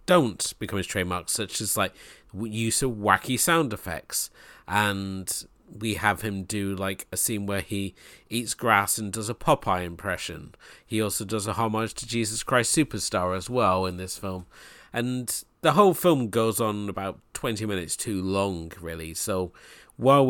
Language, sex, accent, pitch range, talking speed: English, male, British, 90-110 Hz, 170 wpm